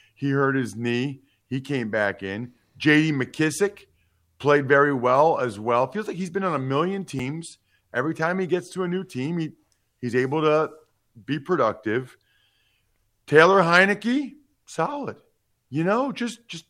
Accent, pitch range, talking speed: American, 125-185 Hz, 160 wpm